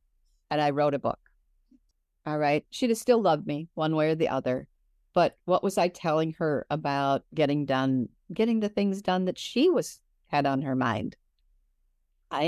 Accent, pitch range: American, 115-180 Hz